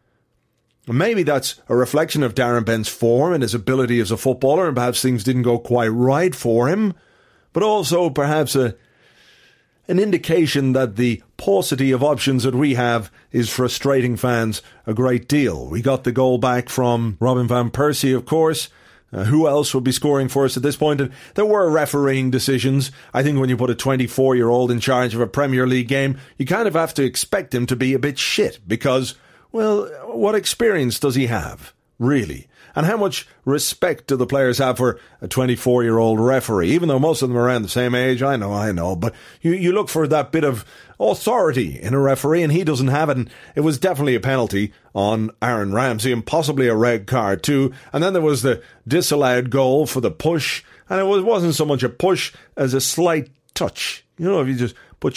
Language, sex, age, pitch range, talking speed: English, male, 40-59, 120-150 Hz, 205 wpm